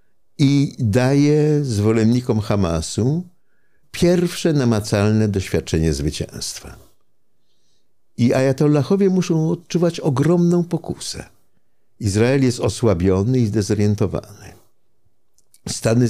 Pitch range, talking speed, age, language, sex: 95-145 Hz, 75 wpm, 60-79, Polish, male